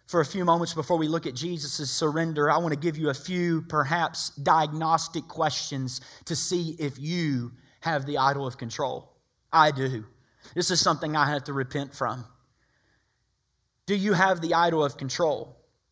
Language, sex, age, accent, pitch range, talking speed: English, male, 30-49, American, 145-190 Hz, 175 wpm